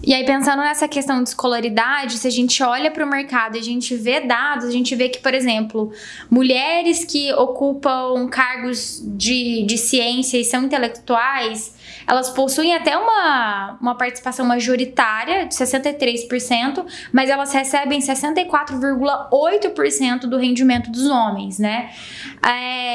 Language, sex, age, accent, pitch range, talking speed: Portuguese, female, 10-29, Brazilian, 245-285 Hz, 140 wpm